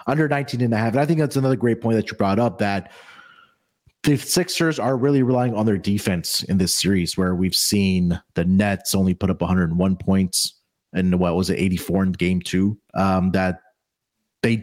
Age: 30-49